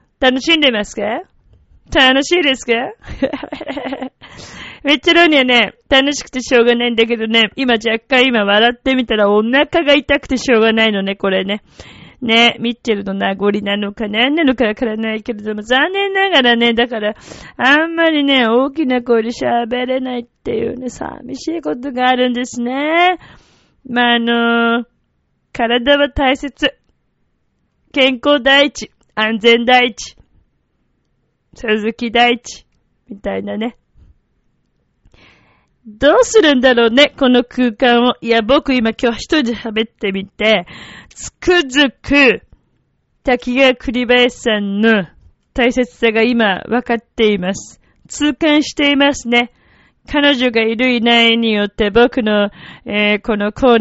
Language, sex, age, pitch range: Japanese, female, 20-39, 220-275 Hz